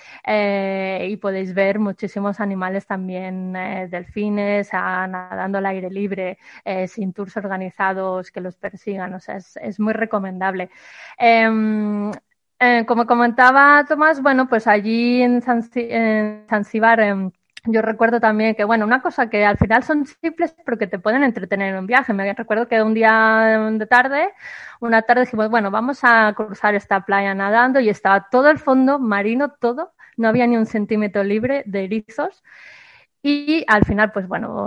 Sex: female